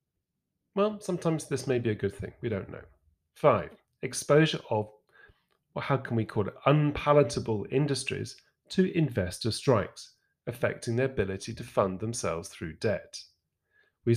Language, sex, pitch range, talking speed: English, male, 100-145 Hz, 145 wpm